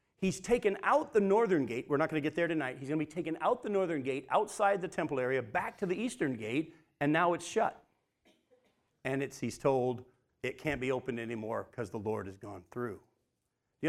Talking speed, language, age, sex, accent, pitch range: 225 wpm, English, 40-59, male, American, 150-220 Hz